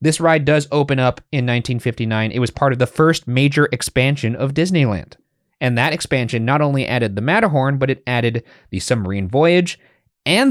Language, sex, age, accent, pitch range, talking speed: English, male, 30-49, American, 115-155 Hz, 185 wpm